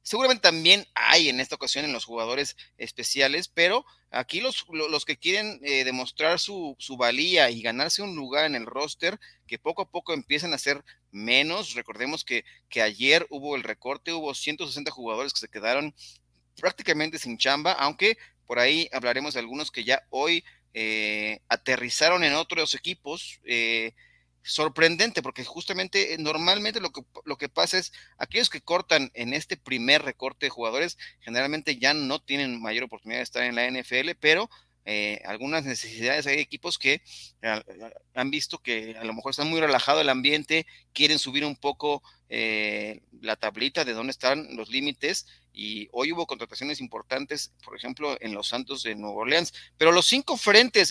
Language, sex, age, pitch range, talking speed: Spanish, male, 30-49, 120-160 Hz, 170 wpm